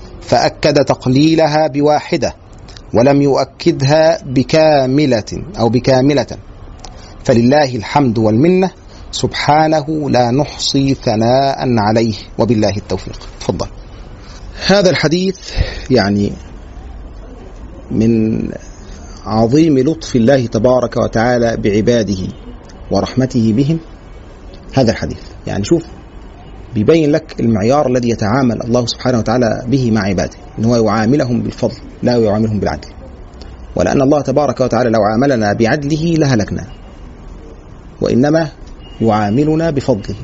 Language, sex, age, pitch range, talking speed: Arabic, male, 40-59, 105-140 Hz, 95 wpm